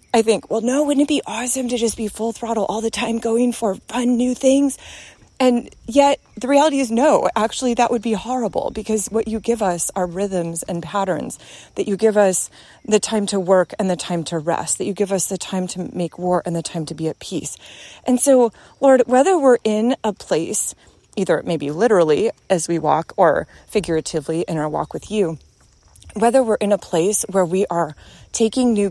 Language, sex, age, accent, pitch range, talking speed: English, female, 30-49, American, 180-235 Hz, 210 wpm